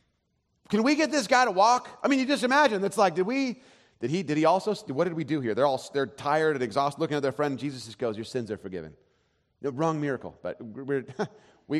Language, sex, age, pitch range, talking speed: English, male, 30-49, 125-205 Hz, 245 wpm